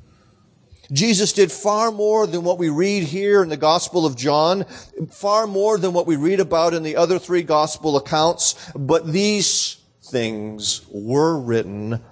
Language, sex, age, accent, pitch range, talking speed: English, male, 40-59, American, 130-185 Hz, 160 wpm